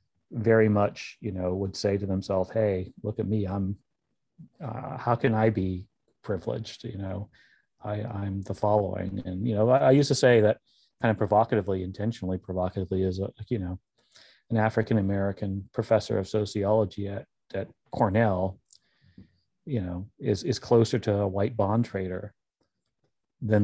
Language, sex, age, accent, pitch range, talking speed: English, male, 30-49, American, 95-115 Hz, 160 wpm